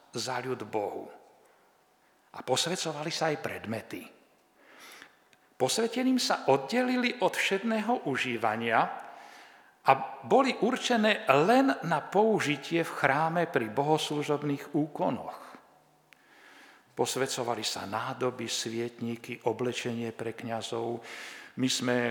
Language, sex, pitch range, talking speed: Slovak, male, 115-180 Hz, 90 wpm